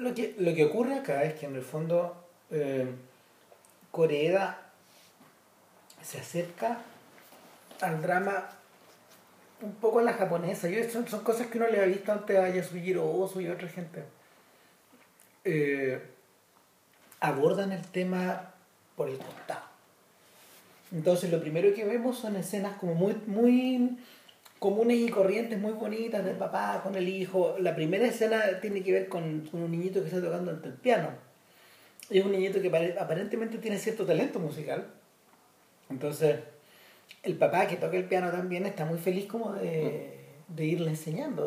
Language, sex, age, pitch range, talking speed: Spanish, male, 40-59, 160-210 Hz, 155 wpm